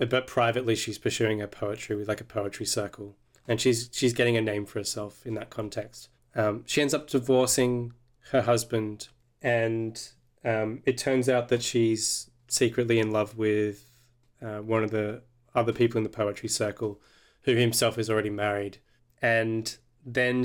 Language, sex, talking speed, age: English, male, 165 wpm, 20-39